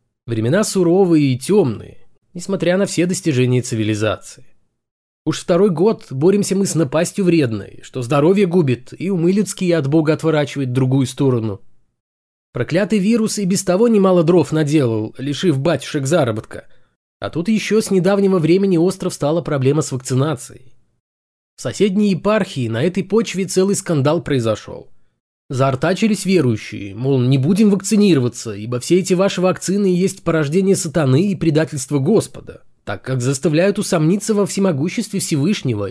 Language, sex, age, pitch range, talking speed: Russian, male, 20-39, 135-200 Hz, 140 wpm